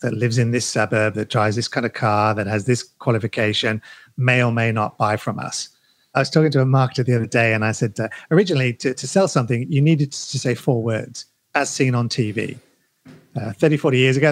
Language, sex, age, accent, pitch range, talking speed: English, male, 40-59, British, 120-150 Hz, 230 wpm